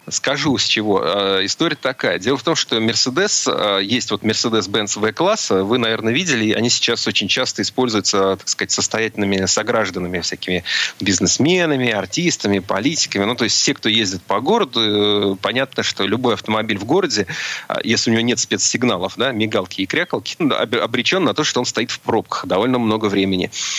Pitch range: 100-120 Hz